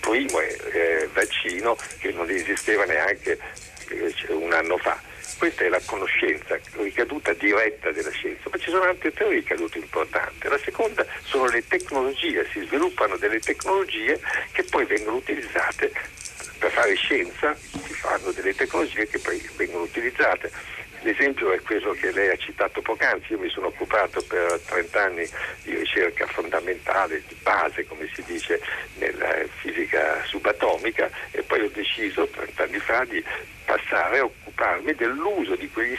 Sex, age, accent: male, 60-79, native